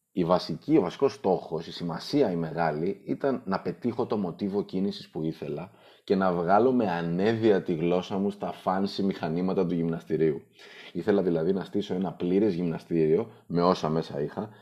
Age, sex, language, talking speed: 30-49, male, Greek, 170 wpm